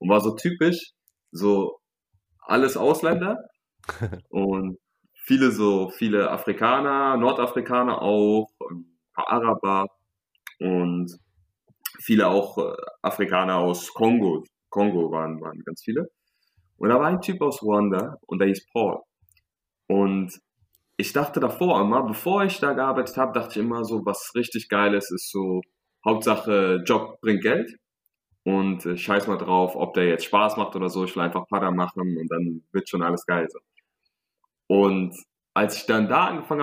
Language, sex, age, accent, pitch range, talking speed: German, male, 20-39, German, 95-125 Hz, 150 wpm